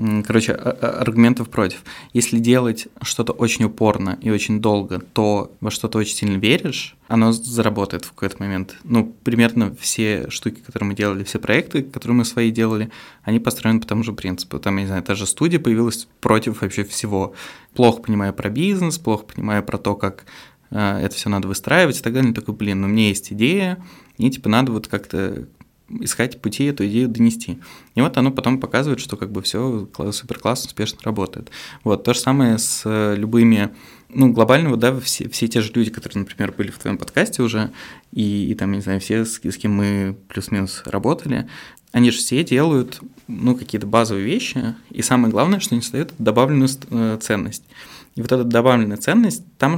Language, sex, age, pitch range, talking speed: Russian, male, 20-39, 105-125 Hz, 185 wpm